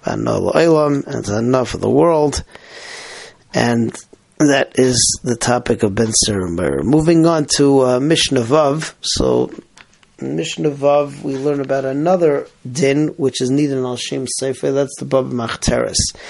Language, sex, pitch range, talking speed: English, male, 125-150 Hz, 125 wpm